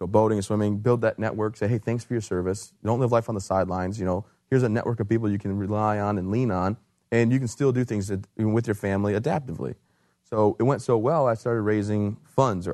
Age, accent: 30-49, American